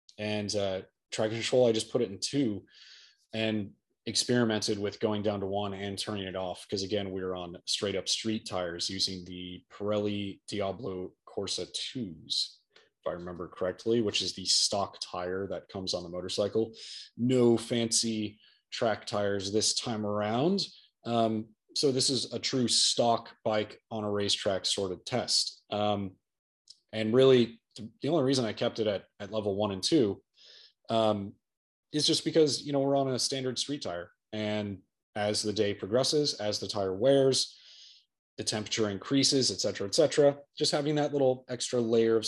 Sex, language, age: male, English, 30-49